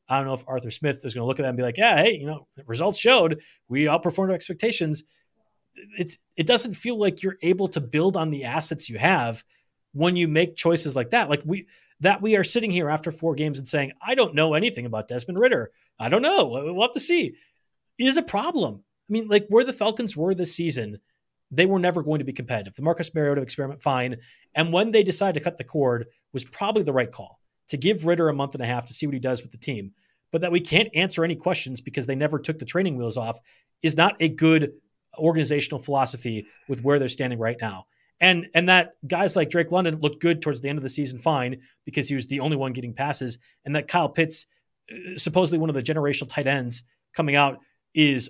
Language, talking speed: English, 235 wpm